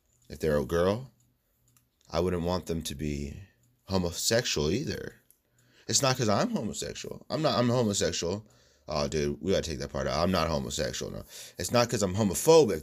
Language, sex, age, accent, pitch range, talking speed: English, male, 30-49, American, 95-120 Hz, 180 wpm